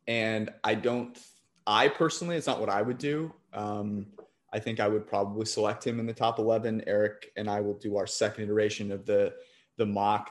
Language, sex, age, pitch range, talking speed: English, male, 30-49, 100-115 Hz, 205 wpm